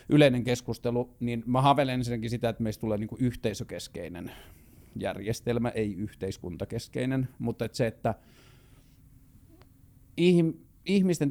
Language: Finnish